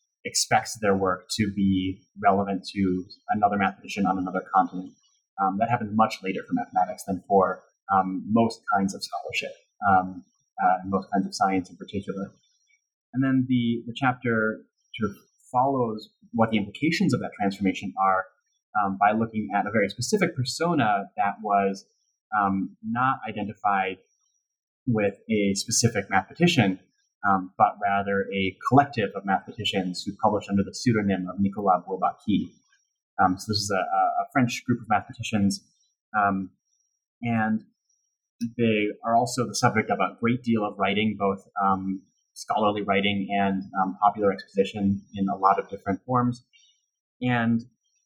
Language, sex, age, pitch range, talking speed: English, male, 30-49, 100-120 Hz, 145 wpm